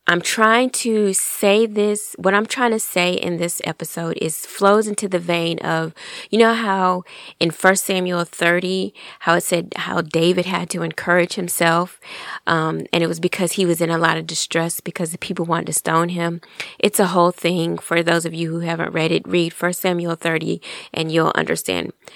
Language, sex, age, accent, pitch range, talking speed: English, female, 20-39, American, 165-190 Hz, 200 wpm